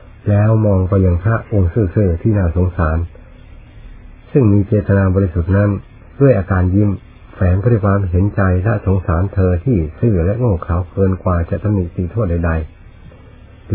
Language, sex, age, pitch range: Thai, male, 60-79, 90-105 Hz